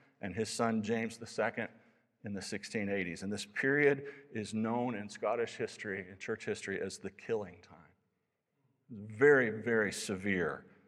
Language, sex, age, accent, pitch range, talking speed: English, male, 60-79, American, 105-135 Hz, 145 wpm